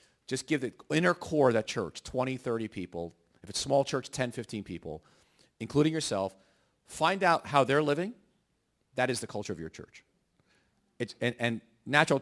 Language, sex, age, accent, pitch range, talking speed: English, male, 40-59, American, 105-150 Hz, 175 wpm